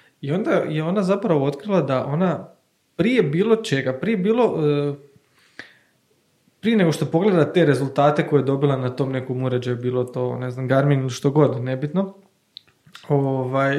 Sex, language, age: male, Croatian, 20-39